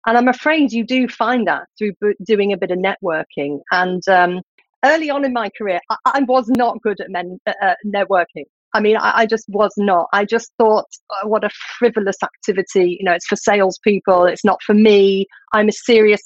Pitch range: 195-245 Hz